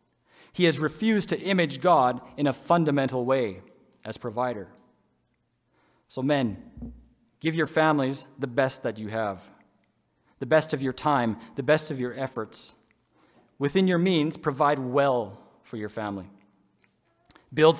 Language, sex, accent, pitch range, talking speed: English, male, American, 125-155 Hz, 140 wpm